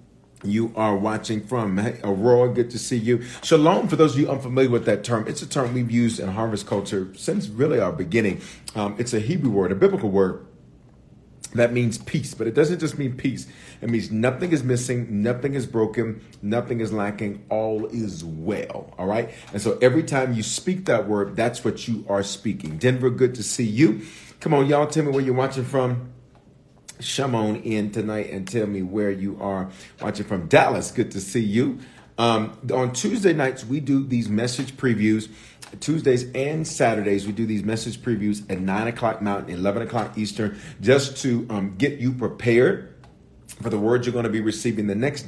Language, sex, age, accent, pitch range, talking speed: English, male, 40-59, American, 105-130 Hz, 195 wpm